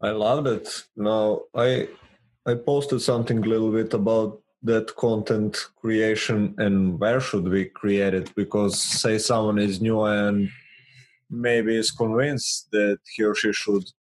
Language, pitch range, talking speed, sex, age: English, 105-115 Hz, 150 wpm, male, 20-39